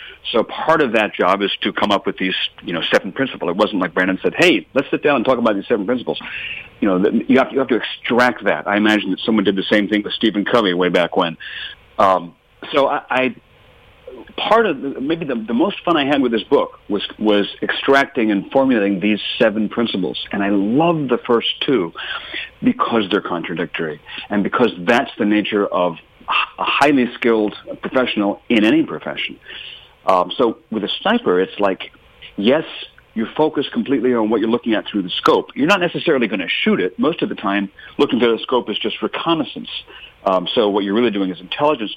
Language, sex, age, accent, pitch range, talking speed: English, male, 50-69, American, 100-135 Hz, 205 wpm